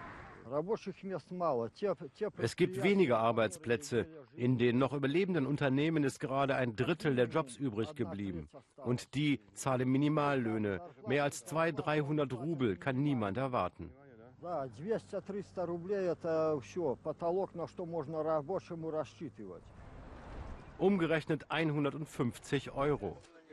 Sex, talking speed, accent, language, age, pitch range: male, 80 wpm, German, German, 60-79, 125-165 Hz